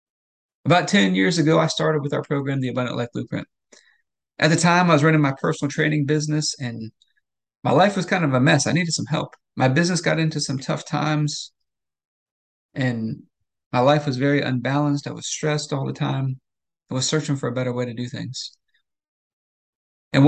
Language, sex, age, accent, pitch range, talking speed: English, male, 40-59, American, 130-155 Hz, 190 wpm